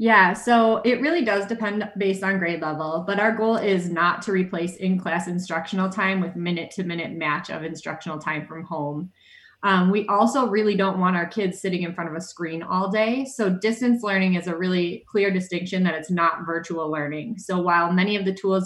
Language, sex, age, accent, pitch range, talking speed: English, female, 20-39, American, 165-195 Hz, 205 wpm